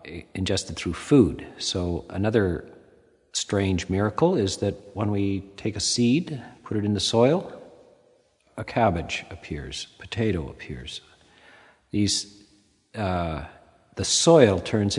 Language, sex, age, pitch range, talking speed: English, male, 50-69, 90-110 Hz, 120 wpm